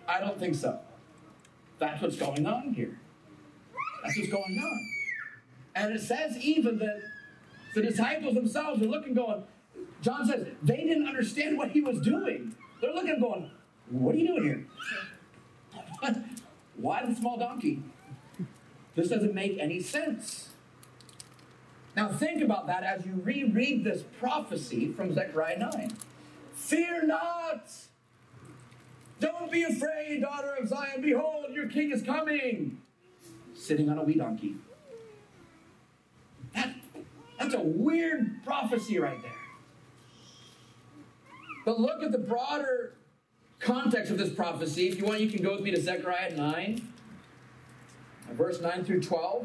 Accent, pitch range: American, 185-280 Hz